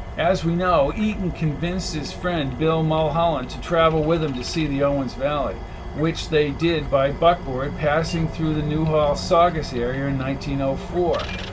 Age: 50-69